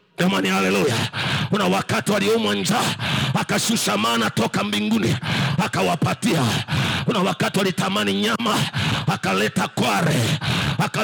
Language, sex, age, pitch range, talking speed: English, male, 50-69, 140-195 Hz, 110 wpm